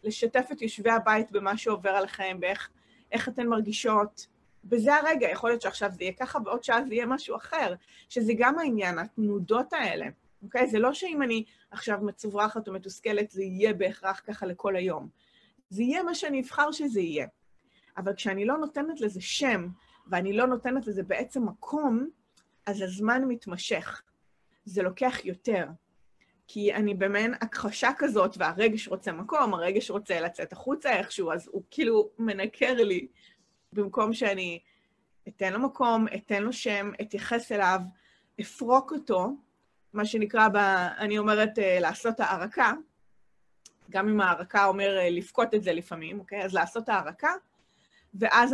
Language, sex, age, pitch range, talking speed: English, female, 30-49, 195-240 Hz, 140 wpm